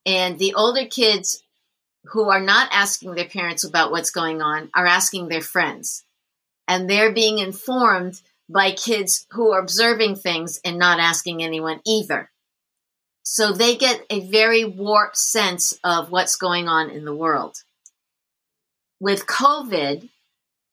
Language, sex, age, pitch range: English, female, 50-69, 180-225 Hz